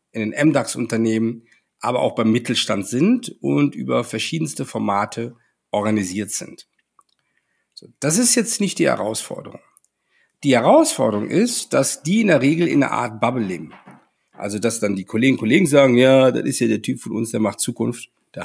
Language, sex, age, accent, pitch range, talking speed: German, male, 50-69, German, 115-175 Hz, 170 wpm